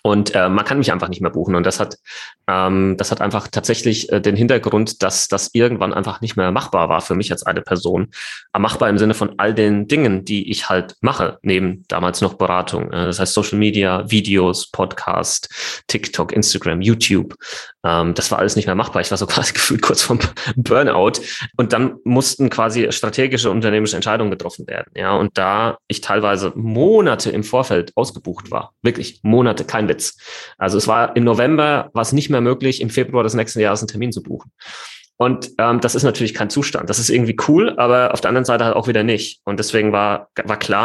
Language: German